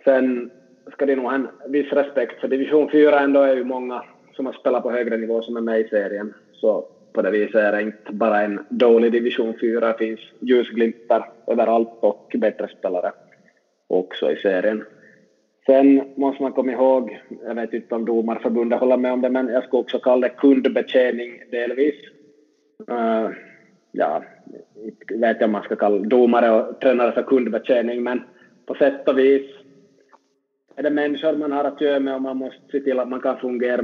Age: 20-39